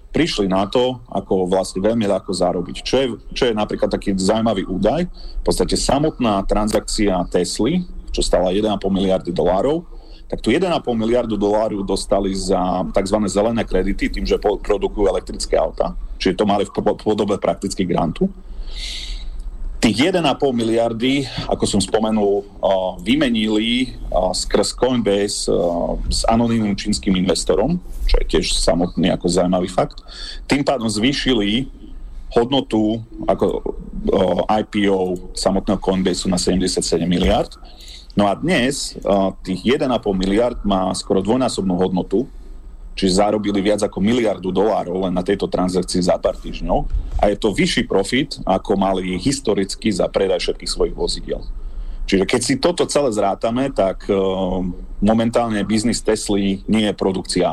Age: 40-59